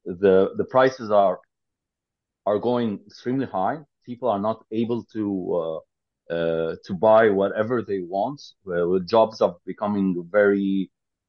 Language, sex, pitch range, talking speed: English, male, 95-130 Hz, 140 wpm